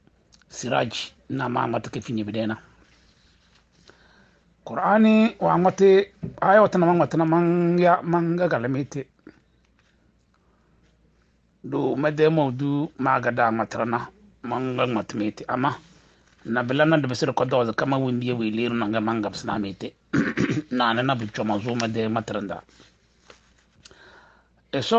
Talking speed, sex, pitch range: 95 wpm, male, 115-155 Hz